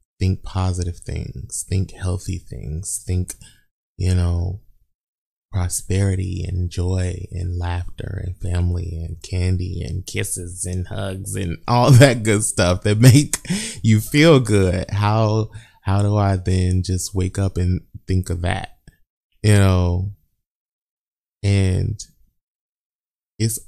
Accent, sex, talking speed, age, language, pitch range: American, male, 120 wpm, 20-39, English, 90-100 Hz